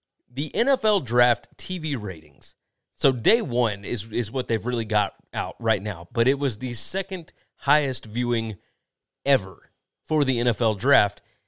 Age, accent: 30-49, American